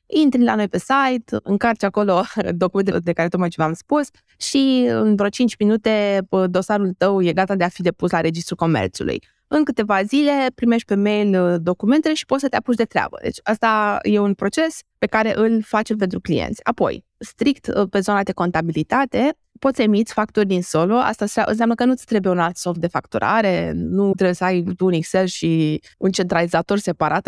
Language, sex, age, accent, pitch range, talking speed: Romanian, female, 20-39, native, 185-240 Hz, 195 wpm